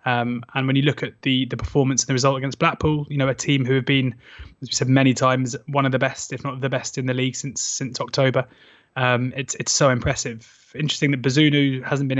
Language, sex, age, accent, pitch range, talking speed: English, male, 20-39, British, 125-135 Hz, 245 wpm